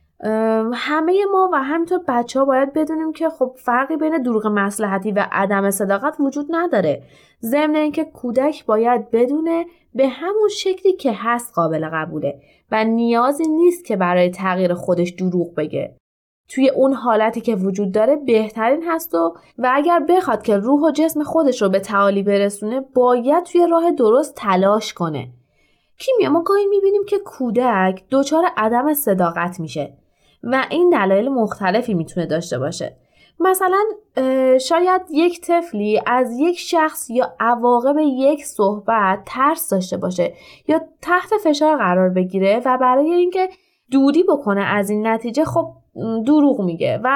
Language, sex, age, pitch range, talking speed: Persian, female, 20-39, 200-315 Hz, 145 wpm